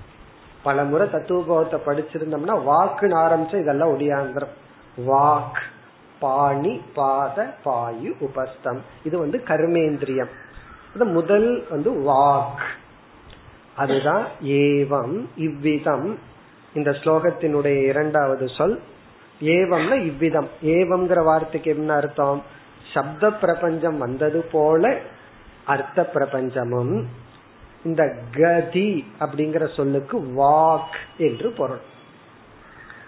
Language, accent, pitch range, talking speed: Tamil, native, 140-170 Hz, 45 wpm